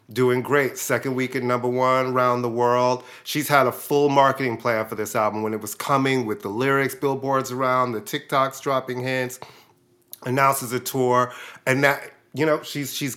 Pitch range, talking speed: 120-145 Hz, 185 wpm